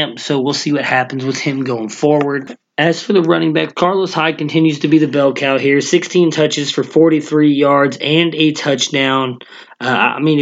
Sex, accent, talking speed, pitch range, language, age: male, American, 195 wpm, 130-150 Hz, English, 20-39